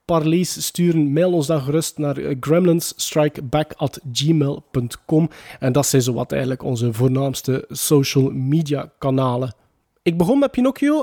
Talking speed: 125 wpm